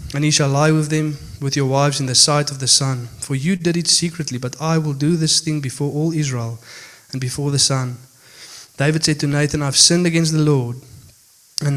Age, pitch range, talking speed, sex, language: 20-39, 130-150 Hz, 220 wpm, male, English